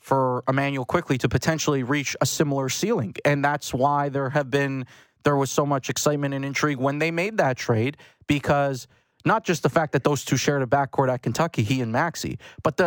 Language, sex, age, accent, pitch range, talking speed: English, male, 30-49, American, 130-160 Hz, 205 wpm